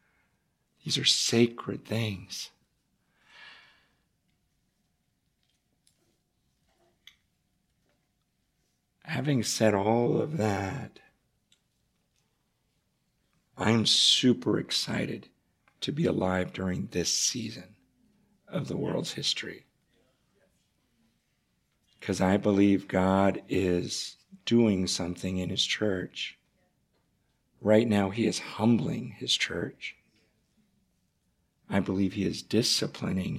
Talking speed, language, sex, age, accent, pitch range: 80 wpm, English, male, 50-69, American, 95-110 Hz